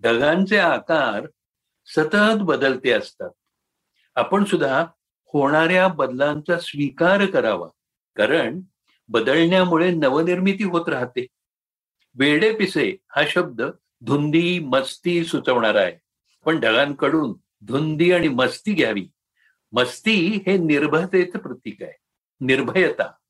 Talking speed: 80 wpm